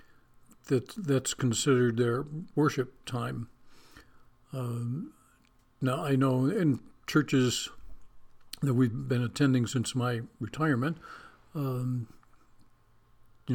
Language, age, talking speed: English, 60-79, 95 wpm